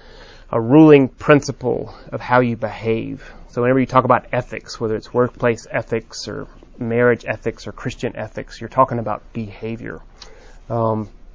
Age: 30-49